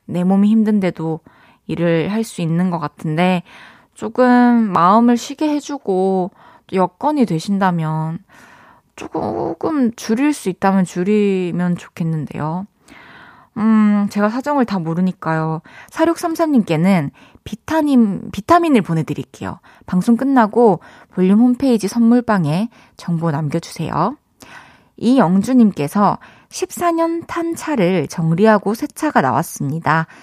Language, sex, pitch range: Korean, female, 165-230 Hz